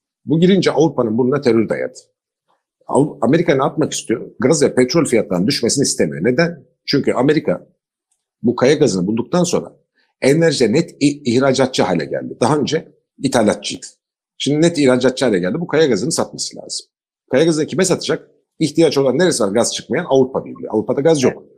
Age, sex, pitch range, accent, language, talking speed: 50-69, male, 125-180 Hz, native, Turkish, 155 wpm